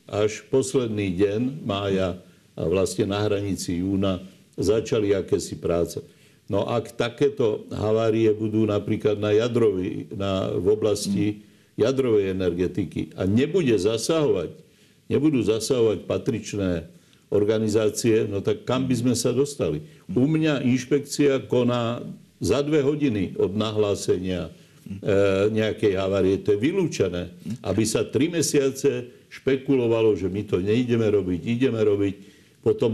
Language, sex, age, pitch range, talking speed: Slovak, male, 60-79, 100-130 Hz, 120 wpm